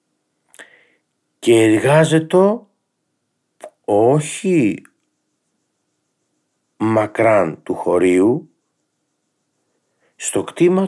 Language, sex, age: Greek, male, 50-69